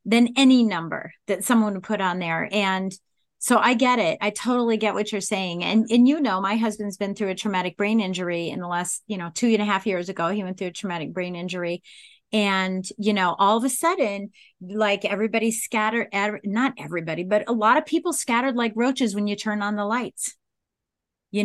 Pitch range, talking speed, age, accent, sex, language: 195-260 Hz, 215 wpm, 30-49, American, female, English